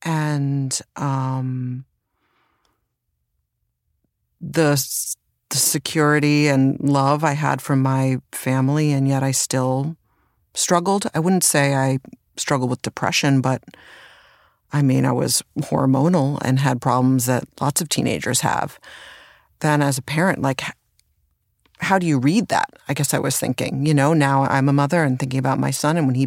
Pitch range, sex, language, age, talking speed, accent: 135-165 Hz, female, English, 40-59, 155 wpm, American